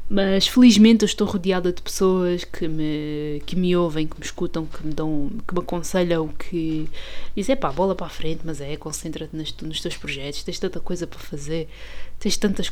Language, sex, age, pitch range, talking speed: Portuguese, female, 20-39, 160-230 Hz, 205 wpm